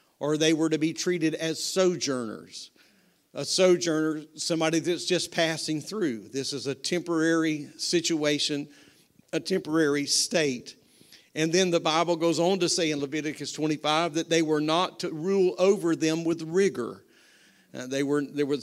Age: 50-69